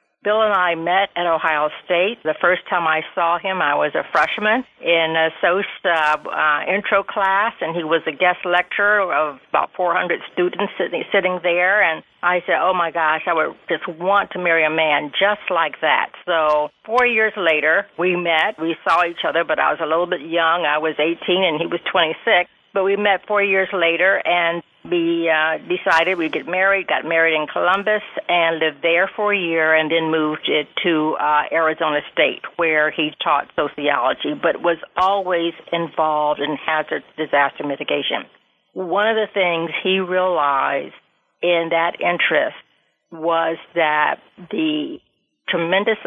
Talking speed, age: 175 wpm, 60-79